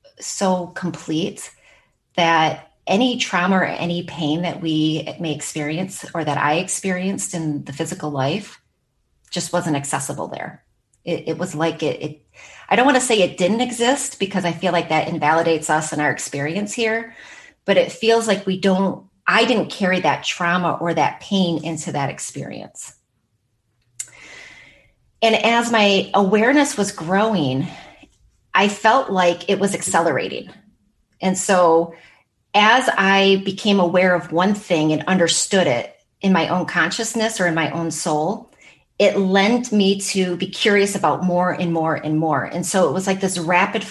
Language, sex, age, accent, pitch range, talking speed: English, female, 30-49, American, 160-195 Hz, 160 wpm